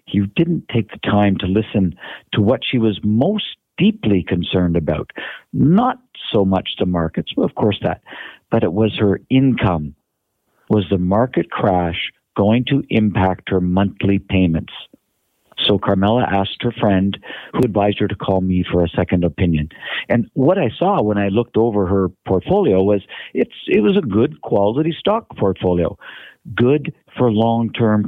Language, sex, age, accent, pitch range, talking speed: English, male, 50-69, American, 95-125 Hz, 160 wpm